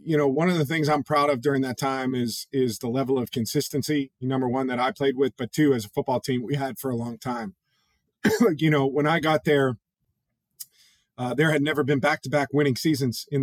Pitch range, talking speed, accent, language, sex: 125-150 Hz, 240 wpm, American, English, male